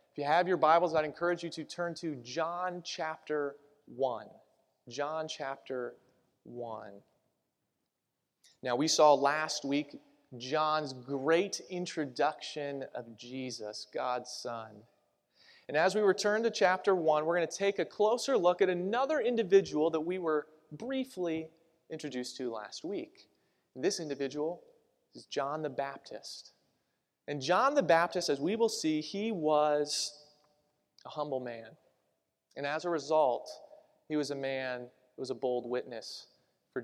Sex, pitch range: male, 135-180 Hz